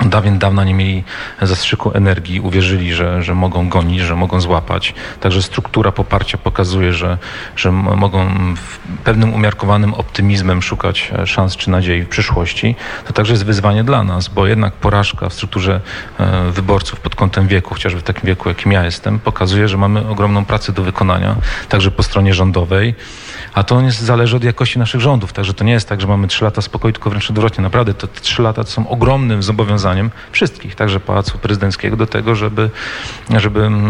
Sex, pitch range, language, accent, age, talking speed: male, 95-110 Hz, Polish, native, 40-59, 175 wpm